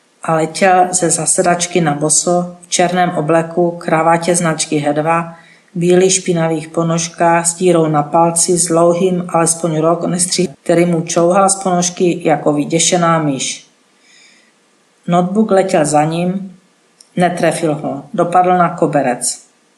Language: Czech